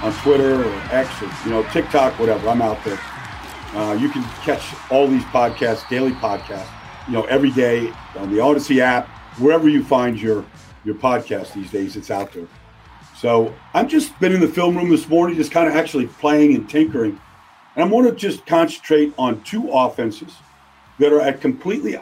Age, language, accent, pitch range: 50-69, English, American, 120-160 Hz